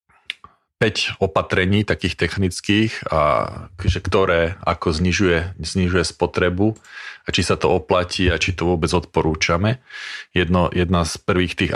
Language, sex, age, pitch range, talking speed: Slovak, male, 40-59, 85-95 Hz, 130 wpm